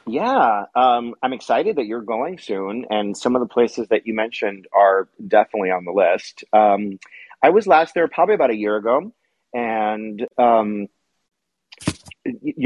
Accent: American